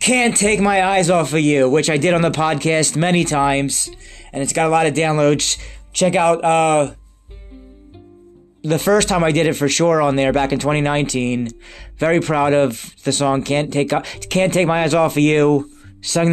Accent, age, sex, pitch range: American, 20-39, male, 110-175 Hz